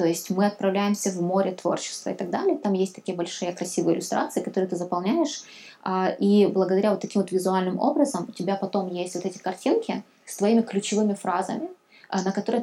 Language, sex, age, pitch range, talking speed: Ukrainian, female, 20-39, 185-210 Hz, 185 wpm